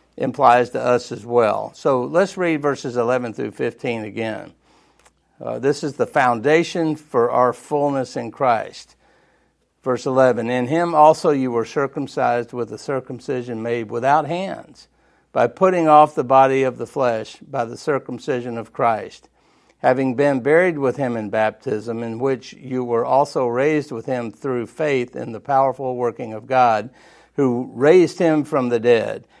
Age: 60-79